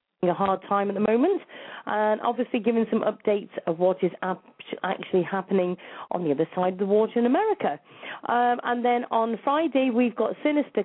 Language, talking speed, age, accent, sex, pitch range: English, 185 wpm, 30-49, British, female, 195-245 Hz